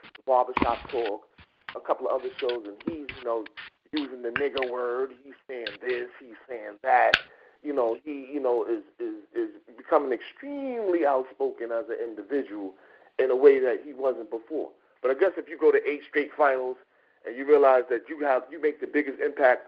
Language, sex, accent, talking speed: English, male, American, 185 wpm